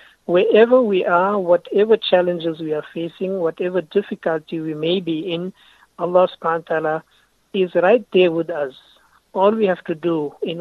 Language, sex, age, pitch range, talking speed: English, male, 60-79, 165-200 Hz, 165 wpm